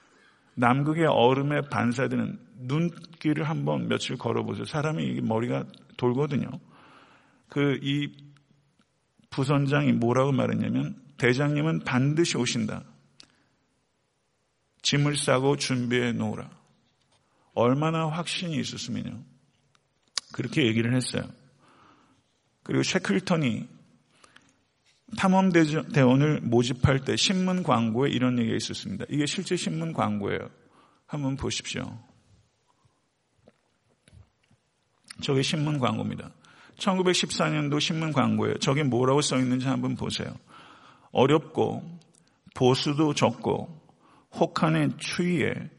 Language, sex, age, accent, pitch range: Korean, male, 50-69, native, 120-155 Hz